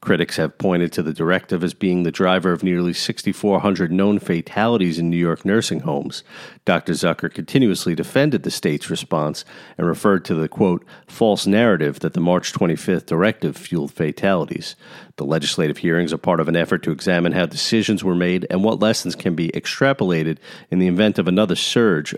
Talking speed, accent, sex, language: 180 wpm, American, male, English